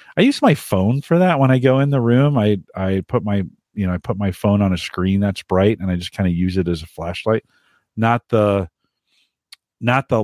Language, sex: English, male